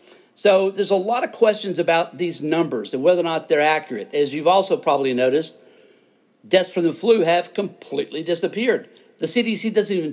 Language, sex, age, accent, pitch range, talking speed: English, male, 50-69, American, 160-210 Hz, 185 wpm